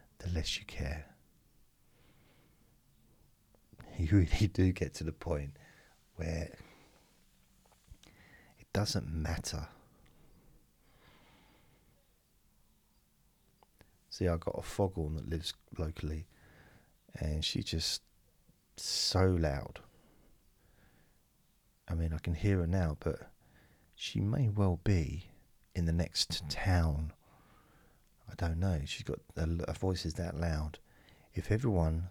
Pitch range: 80-95 Hz